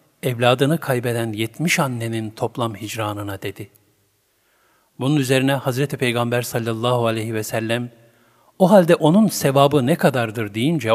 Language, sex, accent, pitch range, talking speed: Turkish, male, native, 120-150 Hz, 120 wpm